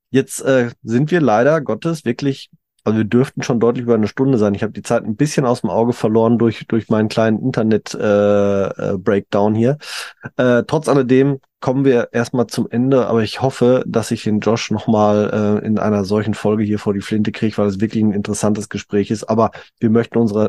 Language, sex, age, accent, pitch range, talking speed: German, male, 20-39, German, 110-135 Hz, 210 wpm